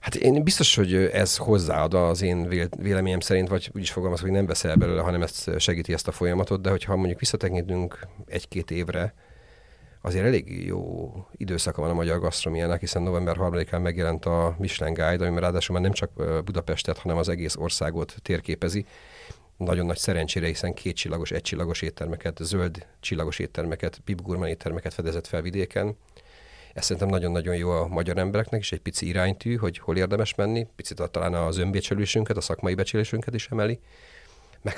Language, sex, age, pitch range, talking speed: Hungarian, male, 40-59, 85-100 Hz, 170 wpm